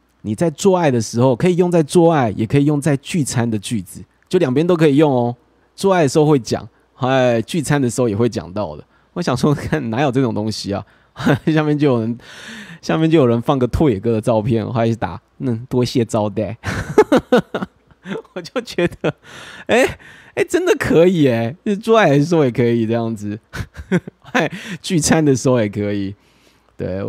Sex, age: male, 20-39